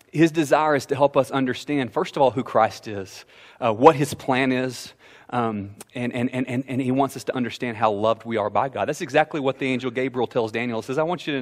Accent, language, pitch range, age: American, English, 110-140 Hz, 30-49